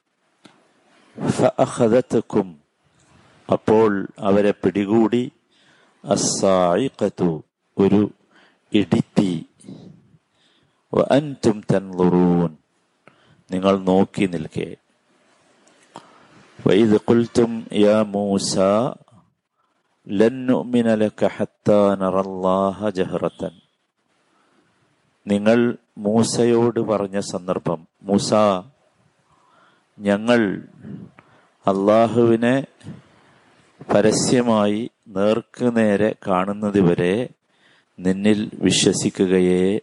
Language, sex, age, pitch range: Malayalam, male, 50-69, 95-115 Hz